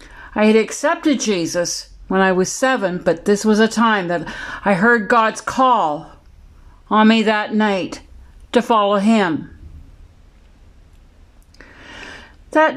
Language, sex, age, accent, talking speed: English, female, 60-79, American, 120 wpm